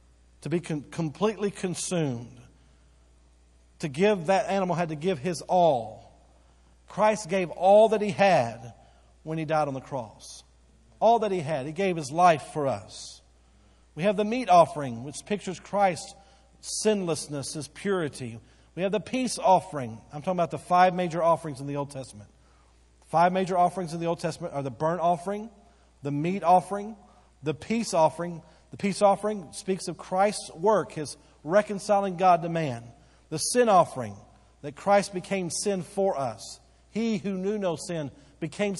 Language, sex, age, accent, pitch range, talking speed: English, male, 50-69, American, 140-195 Hz, 165 wpm